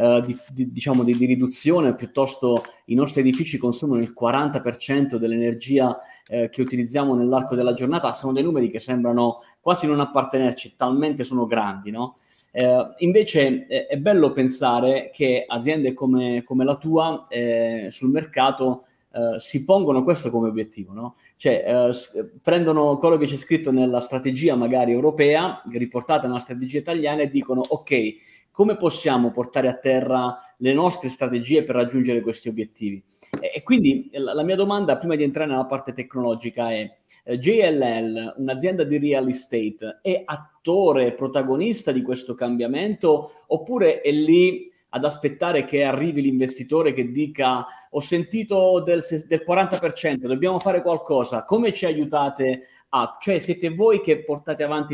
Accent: native